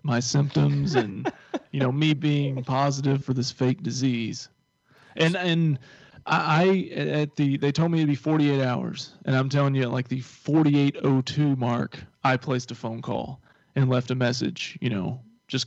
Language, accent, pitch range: English, American, 125-140 Hz